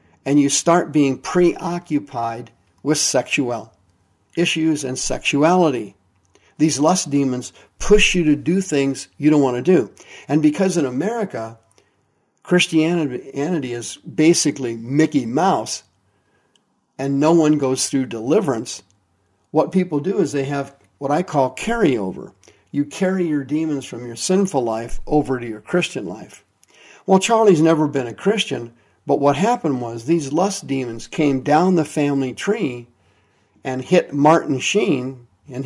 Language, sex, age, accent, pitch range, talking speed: English, male, 50-69, American, 120-160 Hz, 140 wpm